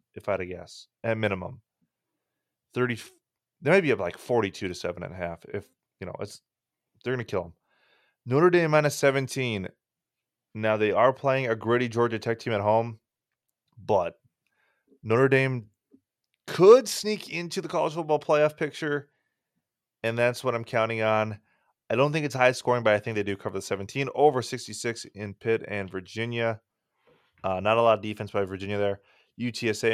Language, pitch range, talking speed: English, 100-120 Hz, 175 wpm